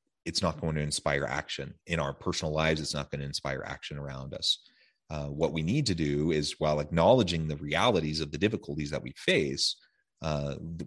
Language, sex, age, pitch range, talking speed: English, male, 30-49, 80-95 Hz, 200 wpm